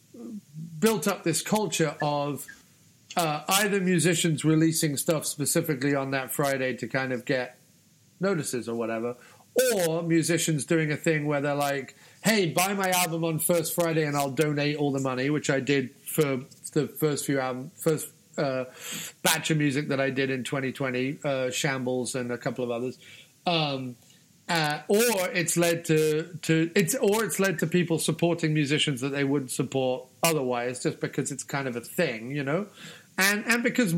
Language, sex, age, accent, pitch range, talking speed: English, male, 40-59, British, 140-170 Hz, 175 wpm